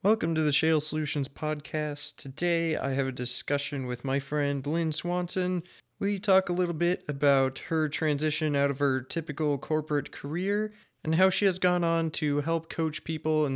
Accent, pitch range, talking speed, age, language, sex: American, 135-165 Hz, 180 wpm, 30-49, English, male